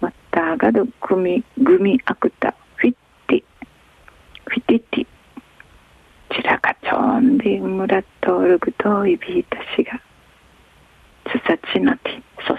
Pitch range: 190-275 Hz